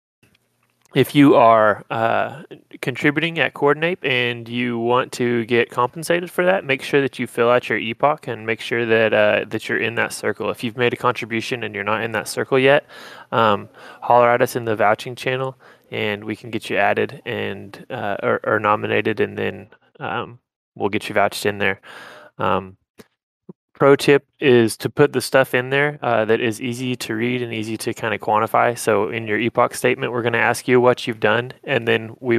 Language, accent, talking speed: English, American, 205 wpm